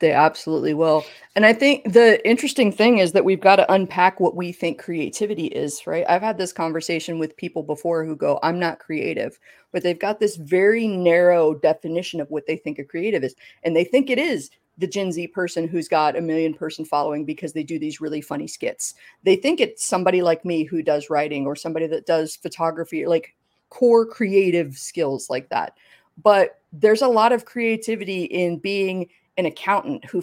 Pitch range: 160-200 Hz